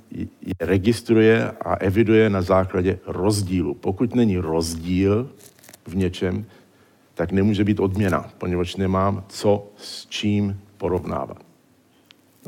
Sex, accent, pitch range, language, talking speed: male, native, 95-110 Hz, Czech, 110 wpm